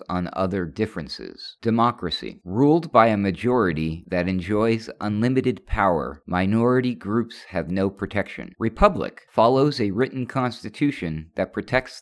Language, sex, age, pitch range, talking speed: English, male, 50-69, 90-120 Hz, 120 wpm